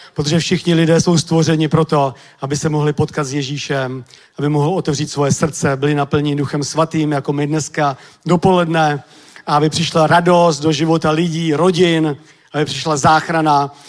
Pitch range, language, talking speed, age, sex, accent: 150-175 Hz, Czech, 155 wpm, 40-59, male, native